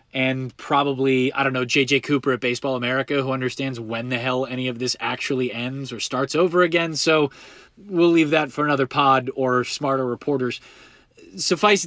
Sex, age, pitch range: male, 20-39, 125-160 Hz